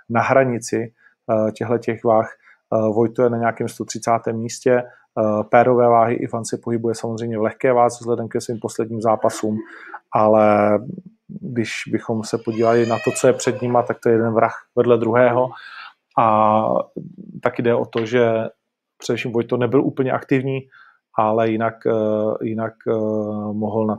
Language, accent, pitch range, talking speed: Czech, native, 110-135 Hz, 150 wpm